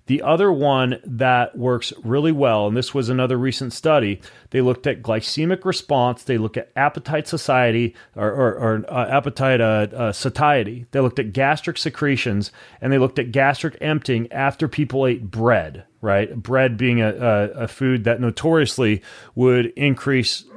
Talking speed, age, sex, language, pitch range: 150 wpm, 30-49, male, English, 120-145 Hz